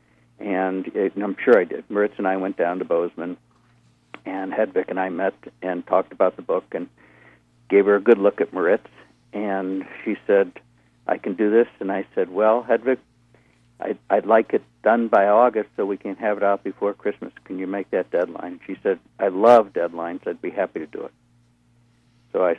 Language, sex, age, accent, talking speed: English, male, 60-79, American, 205 wpm